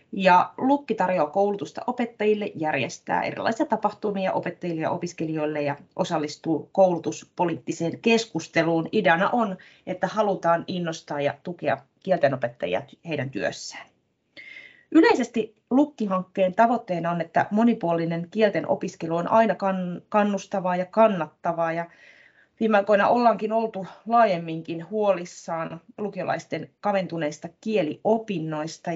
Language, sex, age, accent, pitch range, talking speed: Finnish, female, 30-49, native, 160-210 Hz, 95 wpm